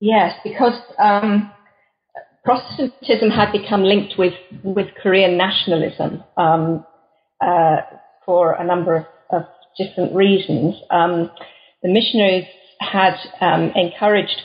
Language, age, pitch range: English, 40-59, 170-195 Hz